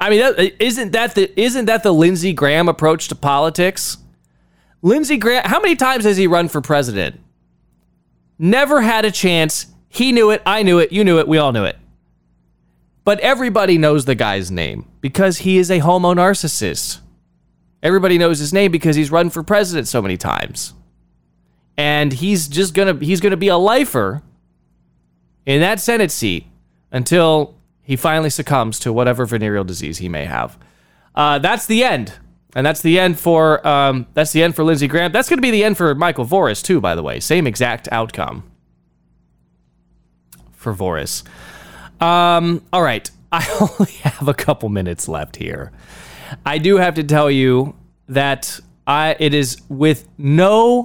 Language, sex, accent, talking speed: English, male, American, 170 wpm